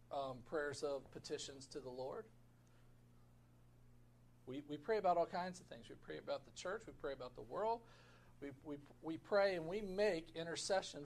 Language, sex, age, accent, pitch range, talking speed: English, male, 50-69, American, 130-205 Hz, 180 wpm